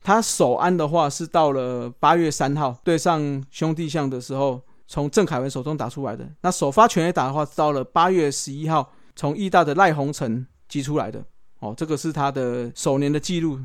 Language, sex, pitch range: Chinese, male, 135-175 Hz